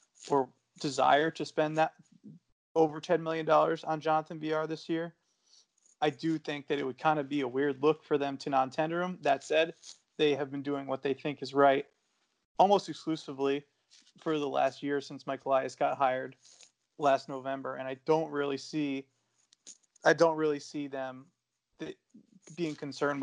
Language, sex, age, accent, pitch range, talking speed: English, male, 30-49, American, 140-160 Hz, 175 wpm